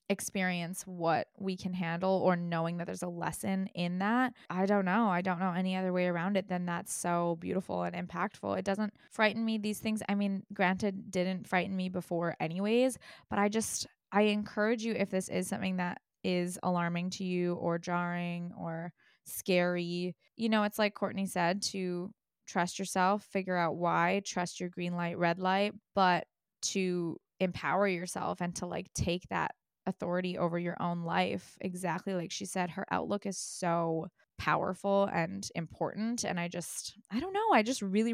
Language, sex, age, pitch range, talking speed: English, female, 20-39, 175-200 Hz, 185 wpm